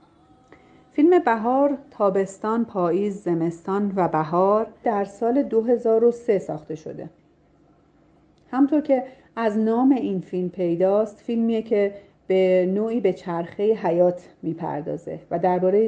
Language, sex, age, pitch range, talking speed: Persian, female, 40-59, 175-225 Hz, 110 wpm